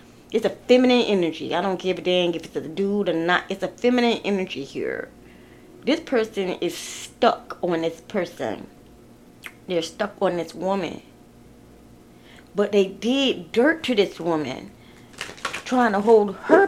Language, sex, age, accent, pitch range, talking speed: English, female, 30-49, American, 175-220 Hz, 155 wpm